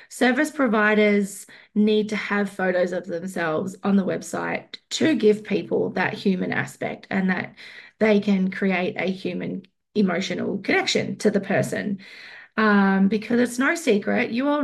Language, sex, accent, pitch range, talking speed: English, female, Australian, 185-225 Hz, 150 wpm